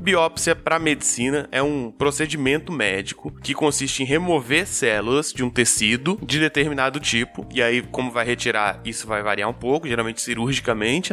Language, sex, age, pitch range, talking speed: Portuguese, male, 20-39, 120-160 Hz, 160 wpm